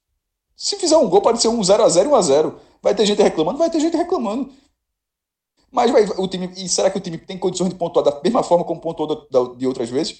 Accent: Brazilian